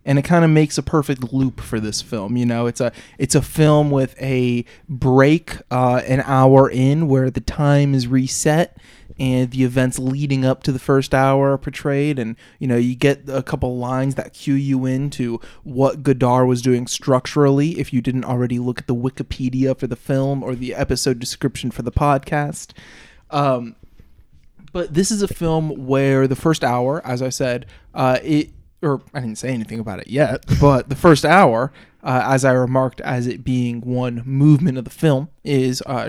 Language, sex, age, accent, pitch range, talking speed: English, male, 20-39, American, 125-145 Hz, 195 wpm